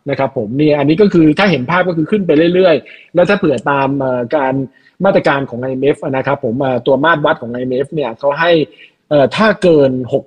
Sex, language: male, Thai